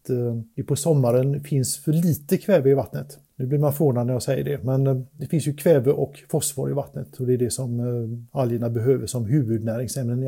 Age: 50-69